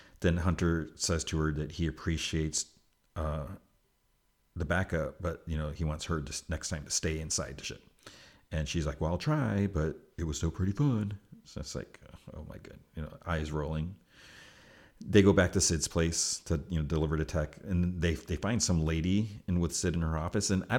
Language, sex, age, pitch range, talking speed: English, male, 40-59, 80-90 Hz, 210 wpm